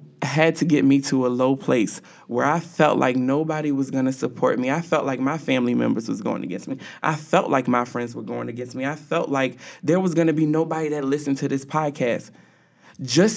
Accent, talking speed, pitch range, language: American, 235 wpm, 145-190 Hz, English